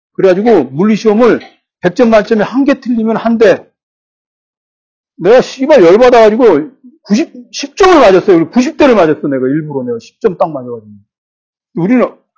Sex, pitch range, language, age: male, 155-240 Hz, Korean, 40-59